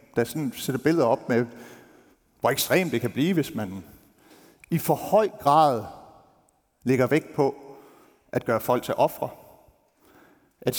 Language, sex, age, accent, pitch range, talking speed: Danish, male, 60-79, native, 110-140 Hz, 145 wpm